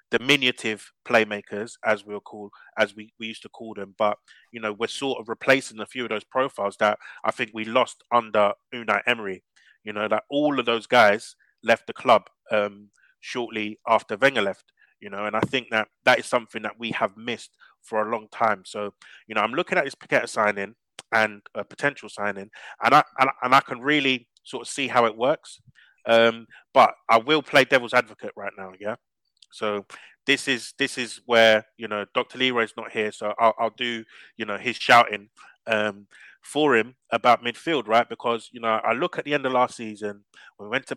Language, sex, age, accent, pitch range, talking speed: English, male, 20-39, British, 105-125 Hz, 205 wpm